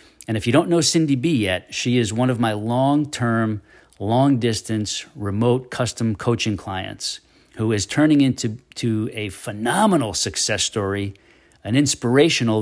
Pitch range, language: 105-125 Hz, English